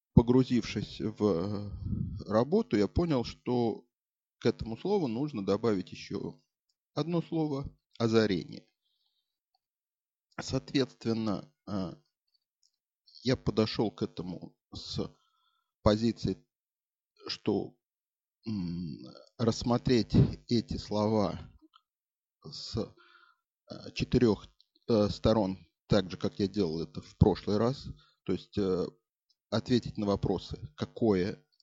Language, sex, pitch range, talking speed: Russian, male, 100-130 Hz, 85 wpm